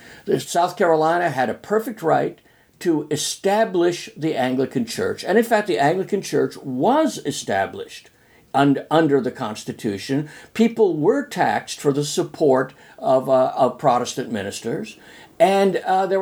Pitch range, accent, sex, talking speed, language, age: 140-185 Hz, American, male, 135 wpm, English, 60-79